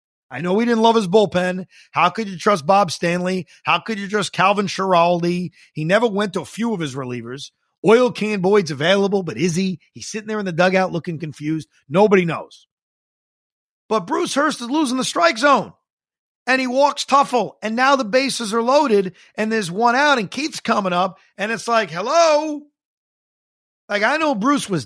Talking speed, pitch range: 195 wpm, 165-225 Hz